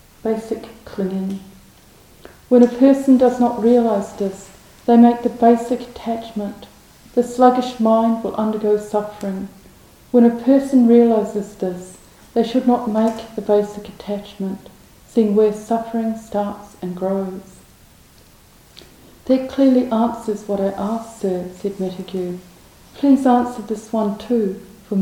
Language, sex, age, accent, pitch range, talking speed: English, female, 40-59, British, 200-235 Hz, 125 wpm